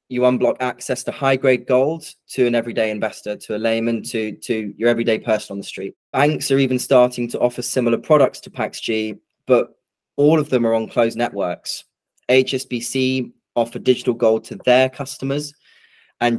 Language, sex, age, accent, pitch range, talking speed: English, male, 20-39, British, 110-130 Hz, 175 wpm